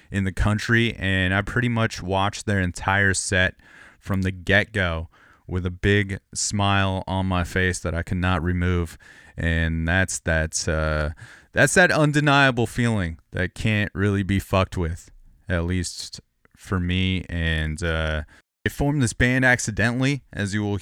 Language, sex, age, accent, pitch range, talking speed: English, male, 30-49, American, 85-105 Hz, 155 wpm